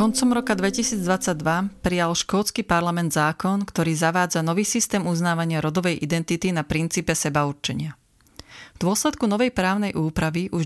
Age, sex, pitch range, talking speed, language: 30-49, female, 155-190 Hz, 130 wpm, Slovak